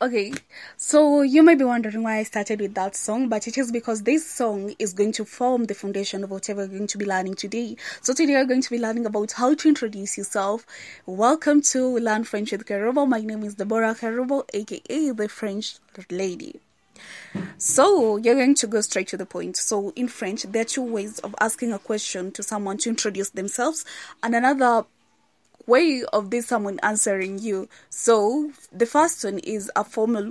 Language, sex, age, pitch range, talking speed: English, female, 20-39, 205-250 Hz, 200 wpm